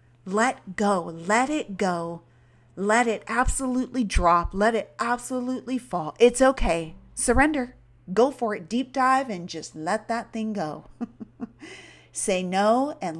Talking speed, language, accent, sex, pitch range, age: 135 wpm, English, American, female, 160-225 Hz, 40-59